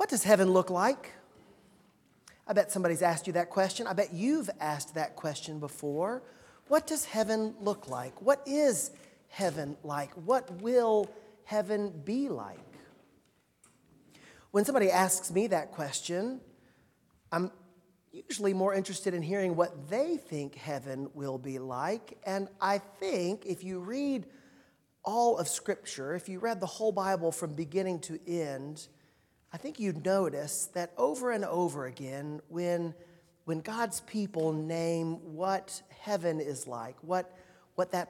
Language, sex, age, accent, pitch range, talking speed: English, male, 40-59, American, 165-205 Hz, 145 wpm